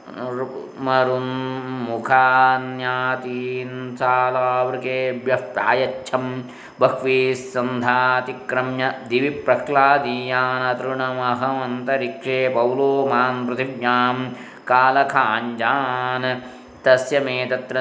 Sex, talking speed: male, 40 wpm